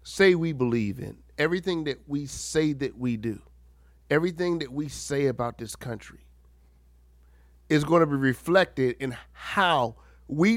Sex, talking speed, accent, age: male, 150 wpm, American, 50-69